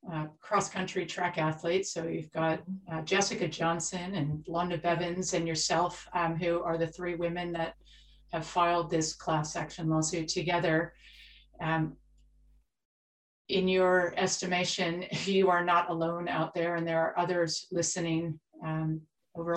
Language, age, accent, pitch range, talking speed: English, 40-59, American, 165-185 Hz, 140 wpm